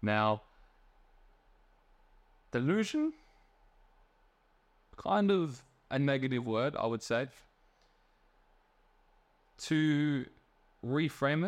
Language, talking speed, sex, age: English, 65 wpm, male, 20-39